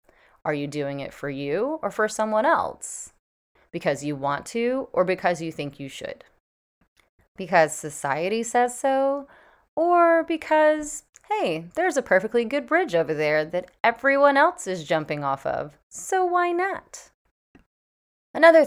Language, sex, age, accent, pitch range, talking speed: English, female, 30-49, American, 145-230 Hz, 145 wpm